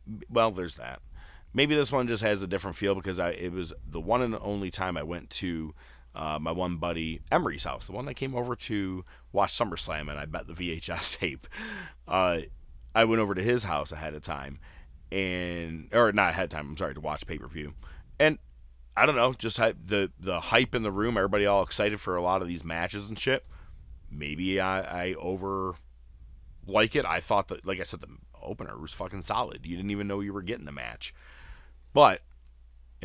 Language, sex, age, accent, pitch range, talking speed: English, male, 30-49, American, 70-100 Hz, 210 wpm